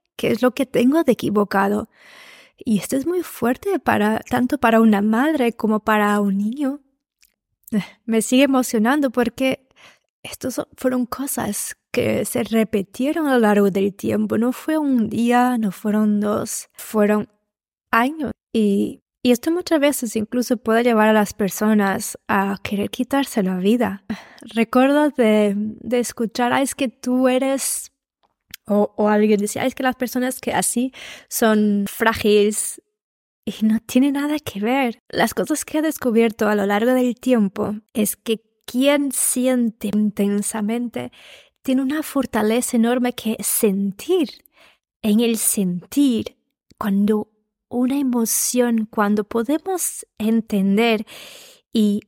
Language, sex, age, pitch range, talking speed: Spanish, female, 20-39, 210-260 Hz, 135 wpm